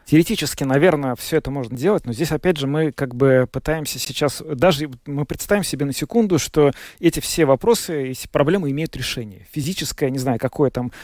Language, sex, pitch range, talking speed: Russian, male, 125-155 Hz, 185 wpm